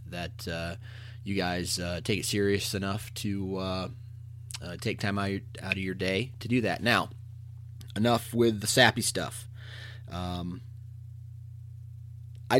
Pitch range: 100-115 Hz